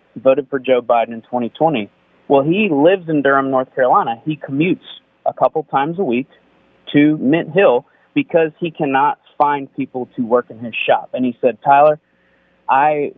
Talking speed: 175 wpm